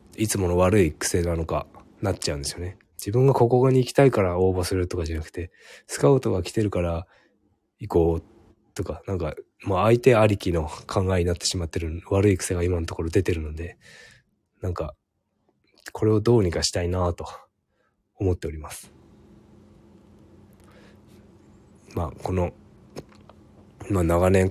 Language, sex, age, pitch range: Japanese, male, 20-39, 85-110 Hz